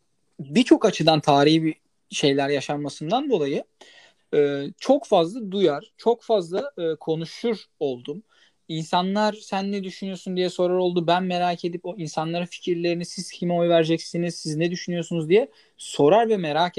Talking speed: 135 wpm